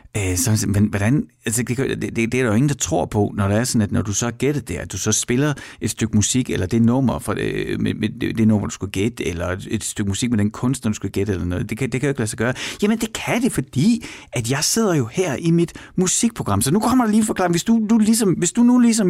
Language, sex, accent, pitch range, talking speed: Danish, male, native, 110-170 Hz, 280 wpm